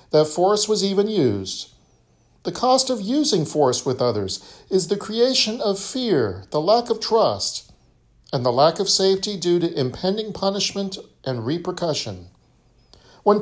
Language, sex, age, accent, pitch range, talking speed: English, male, 50-69, American, 125-210 Hz, 150 wpm